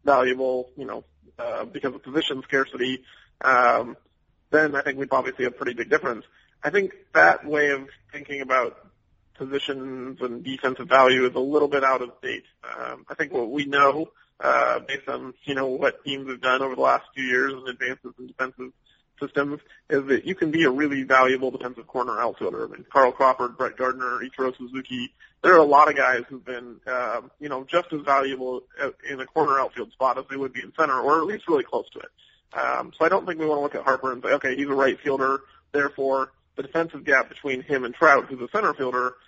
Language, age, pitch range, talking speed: English, 30-49, 130-140 Hz, 220 wpm